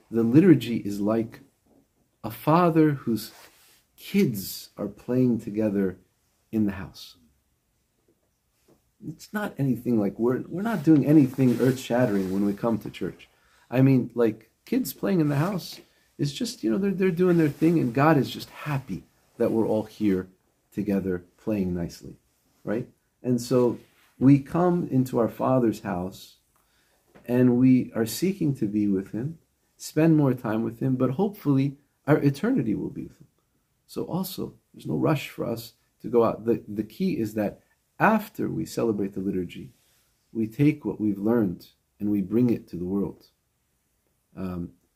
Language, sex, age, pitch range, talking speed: English, male, 50-69, 105-140 Hz, 160 wpm